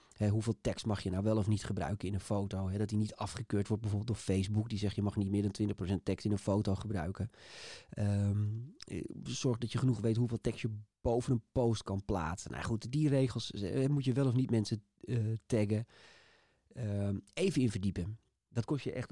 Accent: Dutch